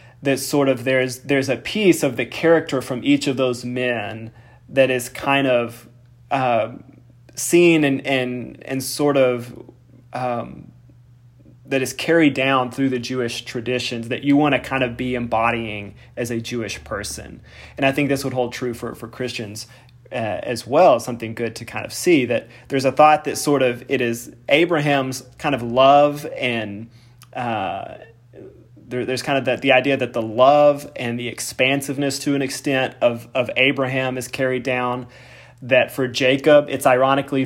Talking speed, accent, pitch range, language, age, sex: 170 wpm, American, 125-145 Hz, English, 20-39, male